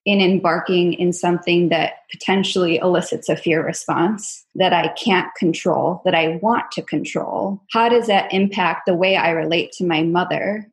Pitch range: 180-220 Hz